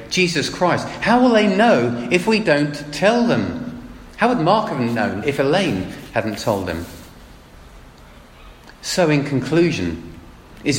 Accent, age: British, 40-59